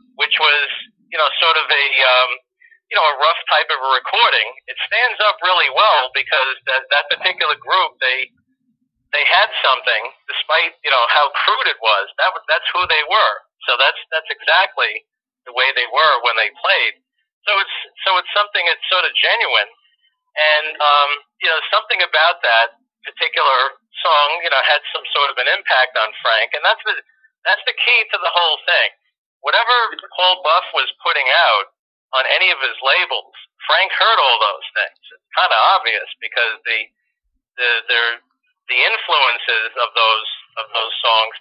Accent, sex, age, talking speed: American, male, 40-59, 175 wpm